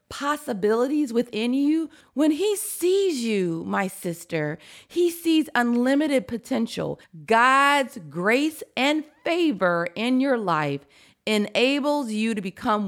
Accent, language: American, English